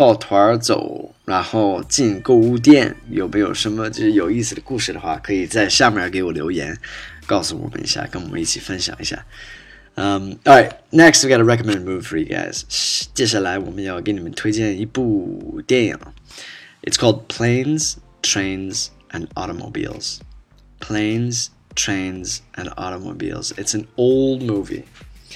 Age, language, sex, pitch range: 20-39, Chinese, male, 100-140 Hz